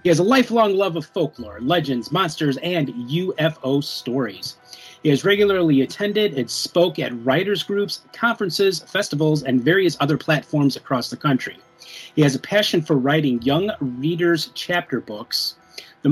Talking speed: 155 wpm